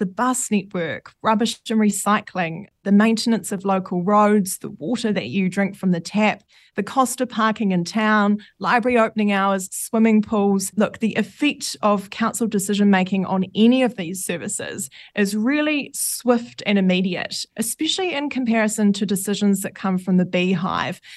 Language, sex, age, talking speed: English, female, 20-39, 160 wpm